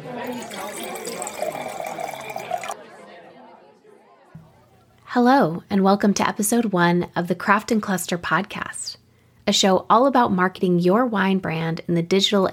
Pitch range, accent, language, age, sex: 175-215 Hz, American, English, 20-39, female